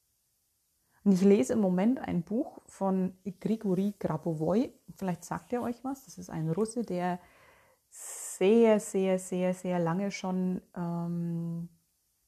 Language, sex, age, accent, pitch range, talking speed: German, female, 30-49, German, 170-210 Hz, 125 wpm